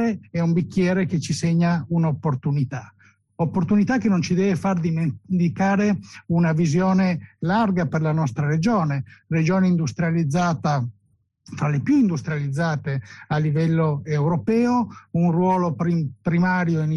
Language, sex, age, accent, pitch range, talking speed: Italian, male, 60-79, native, 155-185 Hz, 125 wpm